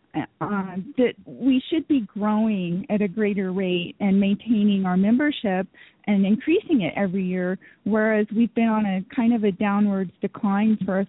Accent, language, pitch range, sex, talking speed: American, English, 200-235 Hz, female, 170 wpm